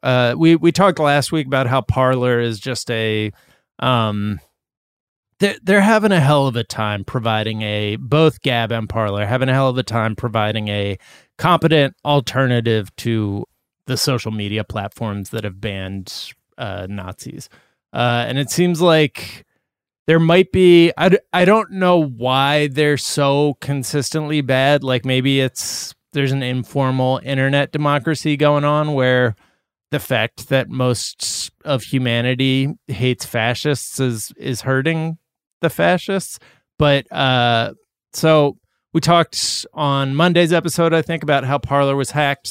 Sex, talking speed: male, 155 wpm